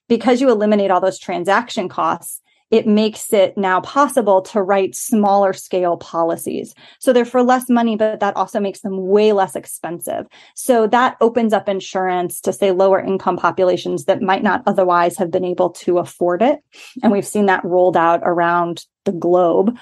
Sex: female